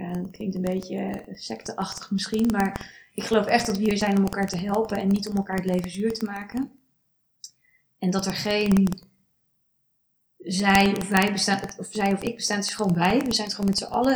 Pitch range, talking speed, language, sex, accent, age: 190-220 Hz, 220 wpm, Dutch, female, Dutch, 20-39